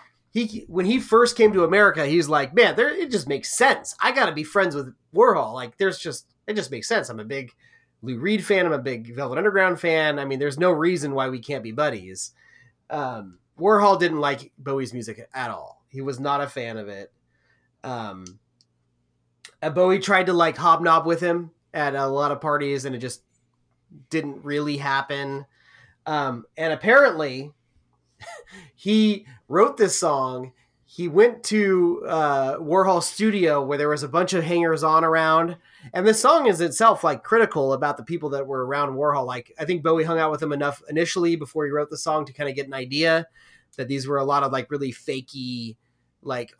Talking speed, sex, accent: 195 wpm, male, American